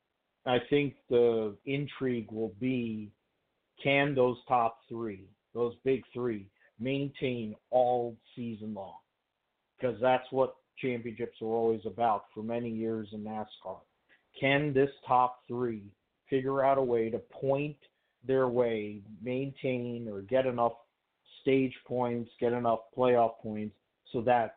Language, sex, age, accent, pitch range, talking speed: English, male, 50-69, American, 110-125 Hz, 130 wpm